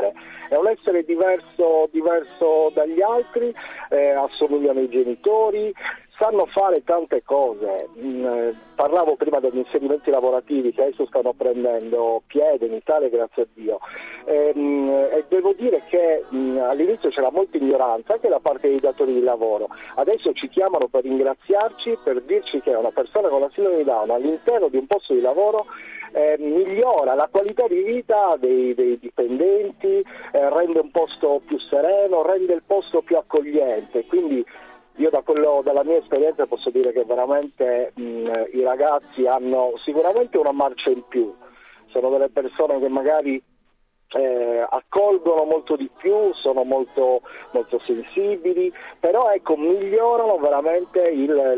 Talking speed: 140 wpm